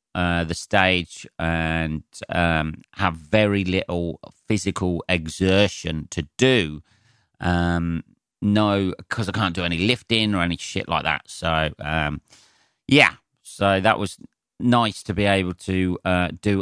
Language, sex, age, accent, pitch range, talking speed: English, male, 40-59, British, 80-95 Hz, 135 wpm